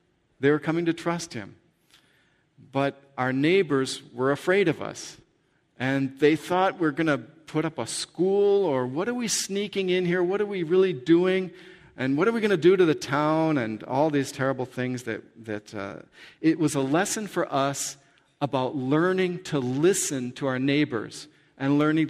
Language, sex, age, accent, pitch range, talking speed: English, male, 50-69, American, 130-165 Hz, 185 wpm